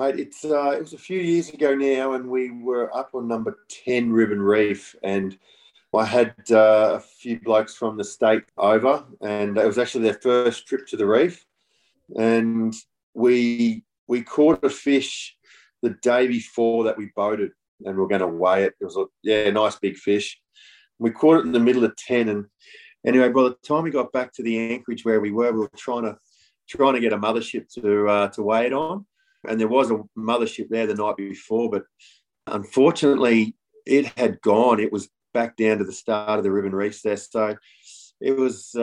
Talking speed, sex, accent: 200 wpm, male, Australian